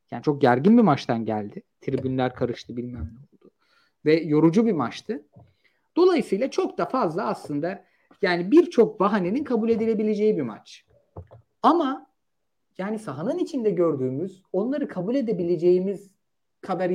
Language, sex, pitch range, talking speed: Turkish, male, 175-260 Hz, 125 wpm